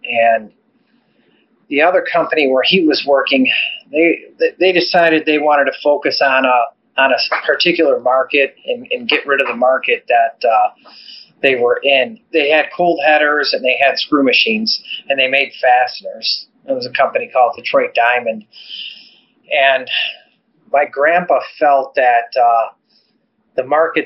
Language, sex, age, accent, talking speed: English, male, 30-49, American, 150 wpm